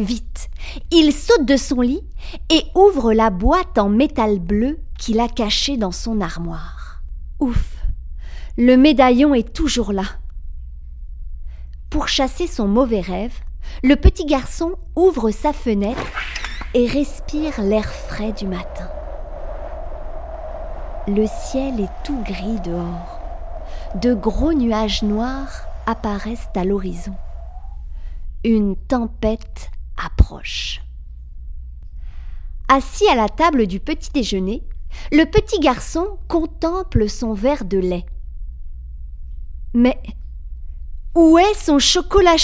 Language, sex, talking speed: French, female, 110 wpm